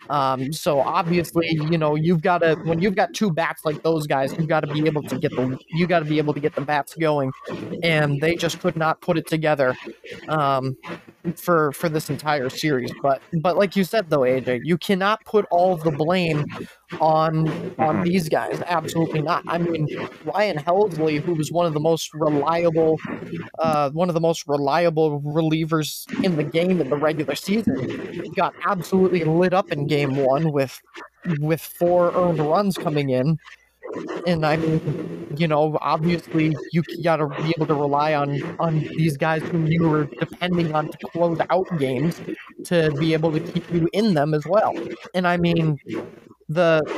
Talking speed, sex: 190 wpm, male